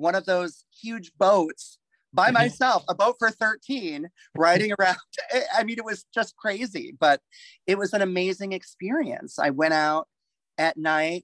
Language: English